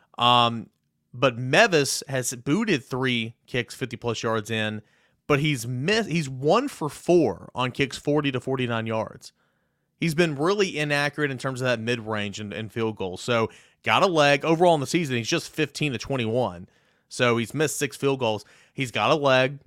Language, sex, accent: English, male, American